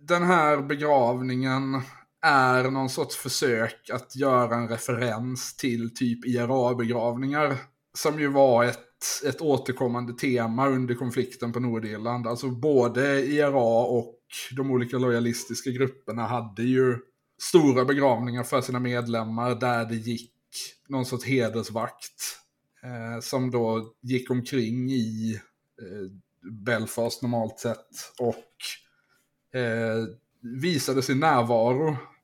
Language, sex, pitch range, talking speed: Swedish, male, 120-135 Hz, 110 wpm